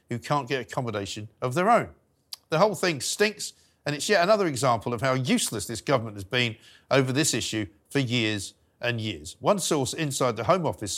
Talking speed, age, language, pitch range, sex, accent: 195 wpm, 50-69, English, 110-155 Hz, male, British